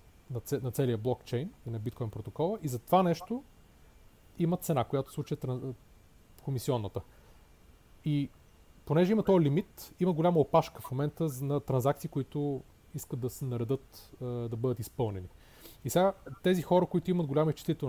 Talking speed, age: 150 wpm, 30-49